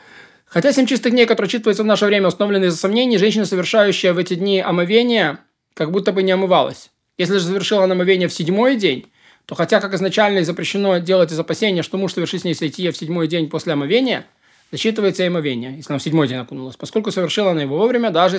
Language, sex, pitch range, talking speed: Russian, male, 165-205 Hz, 210 wpm